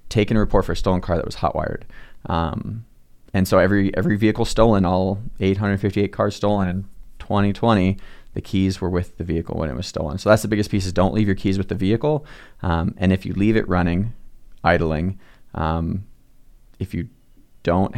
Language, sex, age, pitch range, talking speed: English, male, 20-39, 85-100 Hz, 195 wpm